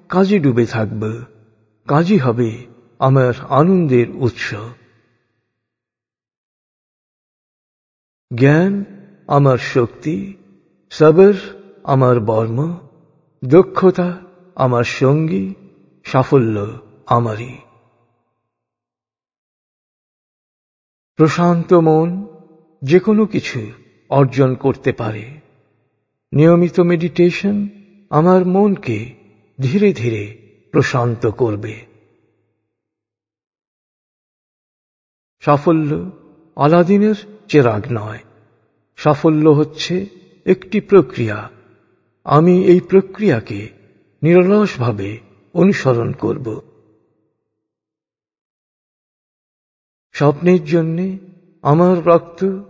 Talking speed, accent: 40 wpm, native